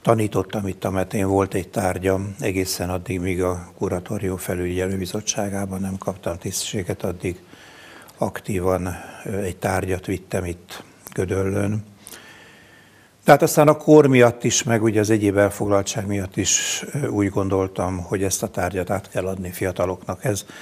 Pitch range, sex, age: 95-115 Hz, male, 60-79